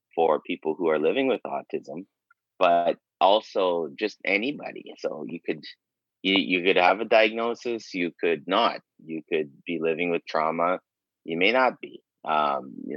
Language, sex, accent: English, male, American